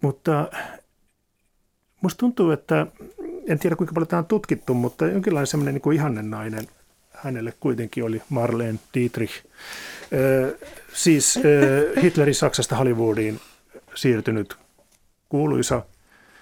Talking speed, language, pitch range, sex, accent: 110 wpm, Finnish, 115-155 Hz, male, native